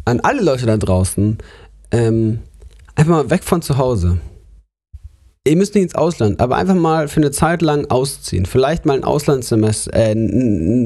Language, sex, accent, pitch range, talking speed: German, male, German, 105-140 Hz, 170 wpm